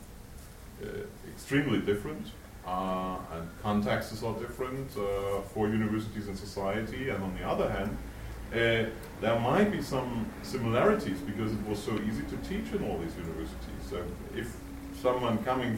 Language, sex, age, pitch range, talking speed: English, male, 40-59, 95-110 Hz, 150 wpm